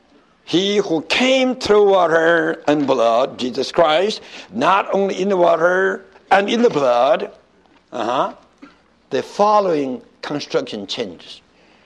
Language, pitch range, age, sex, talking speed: English, 155-250 Hz, 60-79, male, 115 wpm